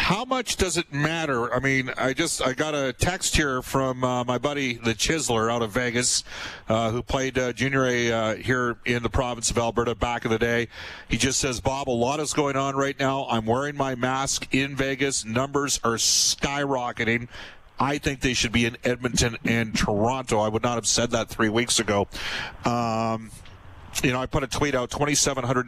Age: 40-59